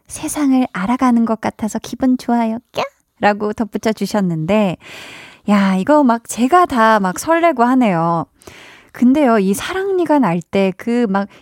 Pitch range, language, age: 200-265 Hz, Korean, 20-39